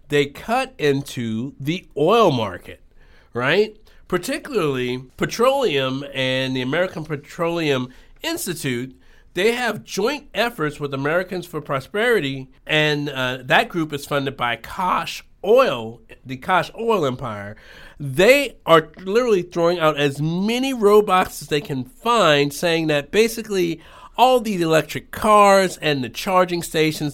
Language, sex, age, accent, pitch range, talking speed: English, male, 50-69, American, 130-175 Hz, 130 wpm